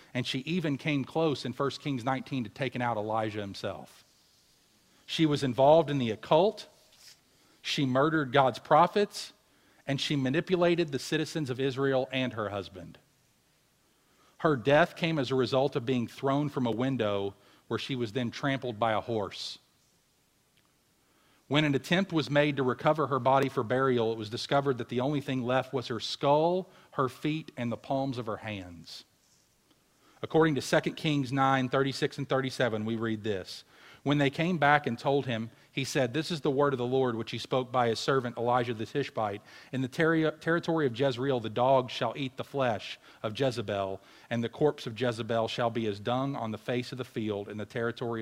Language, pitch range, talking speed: English, 115-145 Hz, 190 wpm